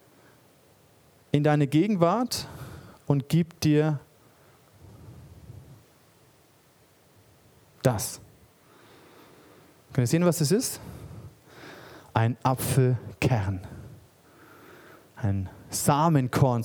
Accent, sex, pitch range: German, male, 120-190 Hz